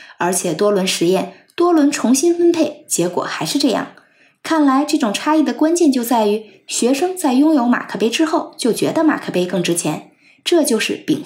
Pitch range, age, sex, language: 210-315 Hz, 20-39, female, Chinese